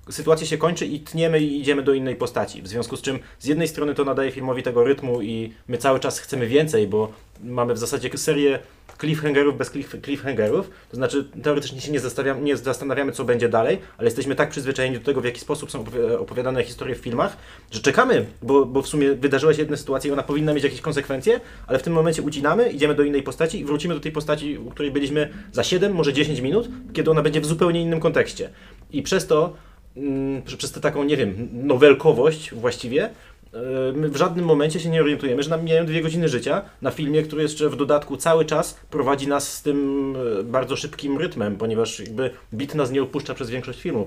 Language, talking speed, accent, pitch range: Polish, 205 wpm, native, 125-150 Hz